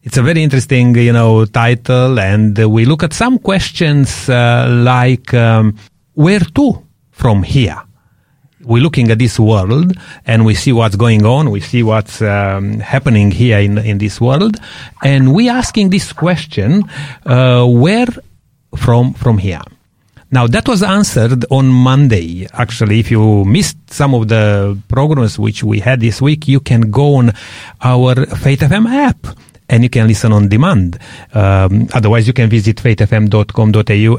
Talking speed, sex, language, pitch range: 160 wpm, male, English, 110-140 Hz